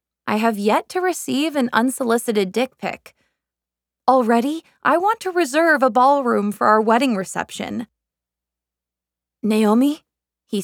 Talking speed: 125 wpm